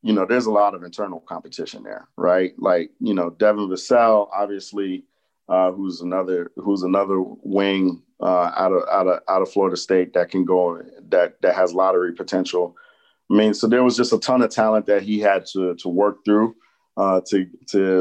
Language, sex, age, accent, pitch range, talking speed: English, male, 40-59, American, 95-120 Hz, 200 wpm